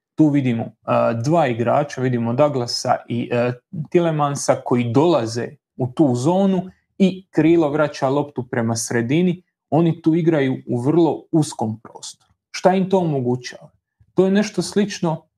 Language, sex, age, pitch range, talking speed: Croatian, male, 30-49, 130-175 Hz, 140 wpm